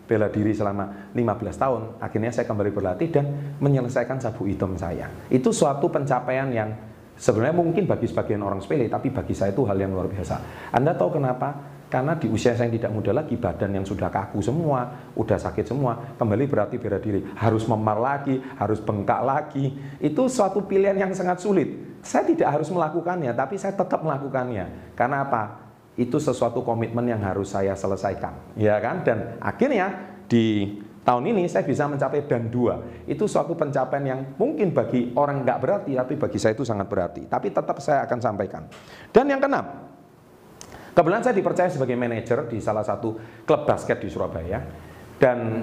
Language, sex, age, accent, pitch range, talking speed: Indonesian, male, 30-49, native, 105-145 Hz, 170 wpm